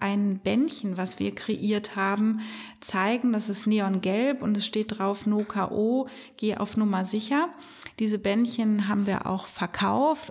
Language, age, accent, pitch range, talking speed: German, 30-49, German, 200-230 Hz, 150 wpm